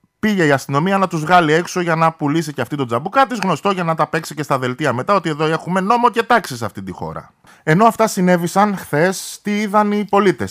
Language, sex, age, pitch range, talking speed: Greek, male, 20-39, 125-185 Hz, 240 wpm